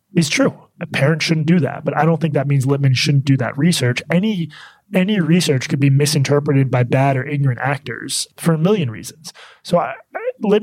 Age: 20-39